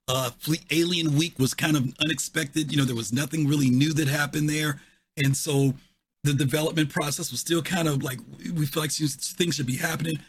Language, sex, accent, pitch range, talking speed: English, male, American, 130-165 Hz, 205 wpm